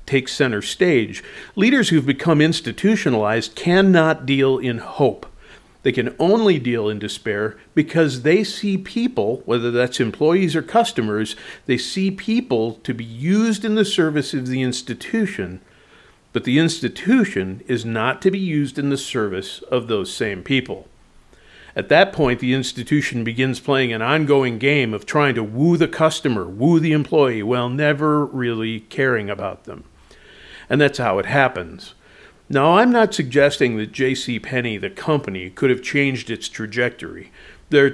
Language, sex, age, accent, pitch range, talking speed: English, male, 50-69, American, 115-160 Hz, 155 wpm